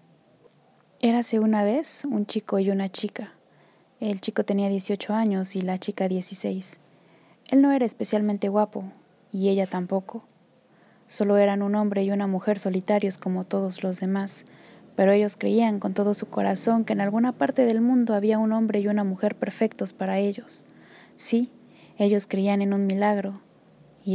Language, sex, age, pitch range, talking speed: Spanish, female, 20-39, 195-215 Hz, 165 wpm